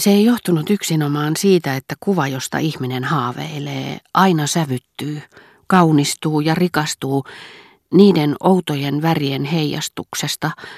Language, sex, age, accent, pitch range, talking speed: Finnish, female, 40-59, native, 135-165 Hz, 105 wpm